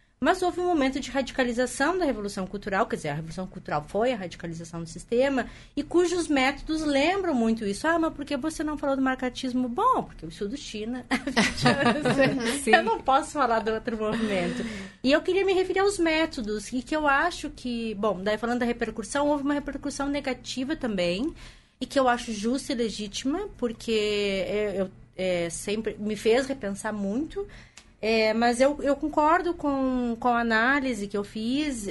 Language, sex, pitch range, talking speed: Portuguese, female, 215-285 Hz, 180 wpm